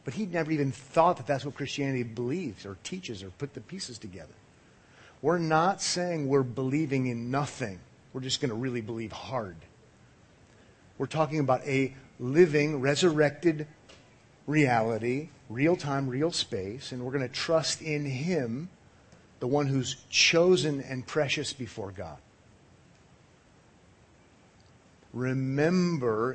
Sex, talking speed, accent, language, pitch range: male, 130 wpm, American, English, 110-145 Hz